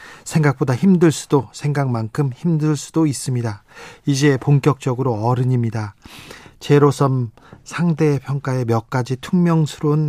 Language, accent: Korean, native